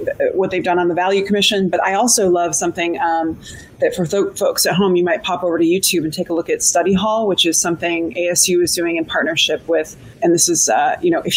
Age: 30-49